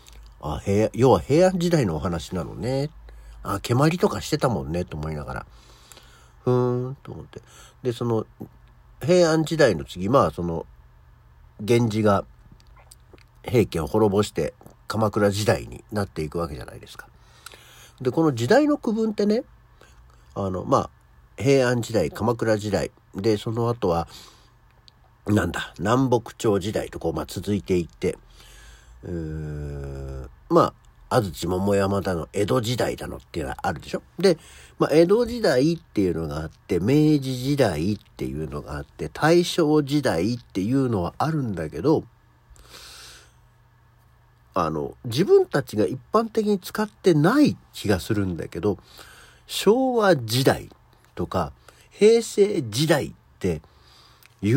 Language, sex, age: Japanese, male, 50-69